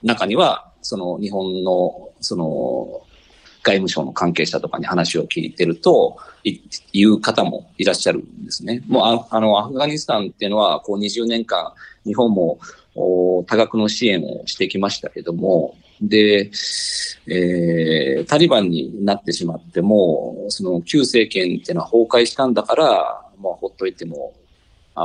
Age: 40-59